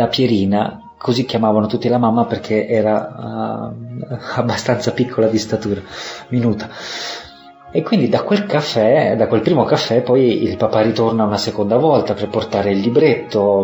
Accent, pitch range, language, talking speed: native, 100-120 Hz, Italian, 145 wpm